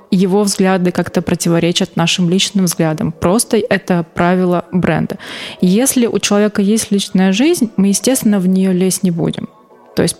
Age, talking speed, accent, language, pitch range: 20-39, 155 wpm, native, Russian, 180-215 Hz